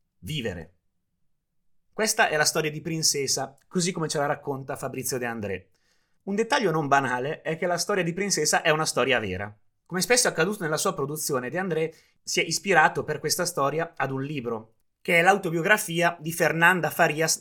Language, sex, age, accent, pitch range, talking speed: Italian, male, 30-49, native, 135-170 Hz, 185 wpm